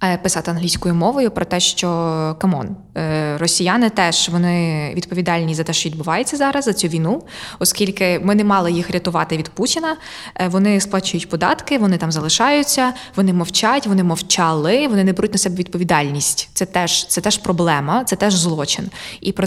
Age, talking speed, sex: 20-39, 165 wpm, female